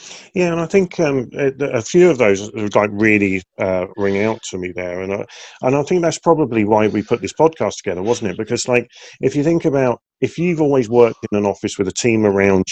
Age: 40-59